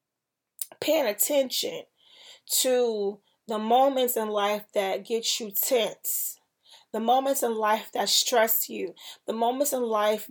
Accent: American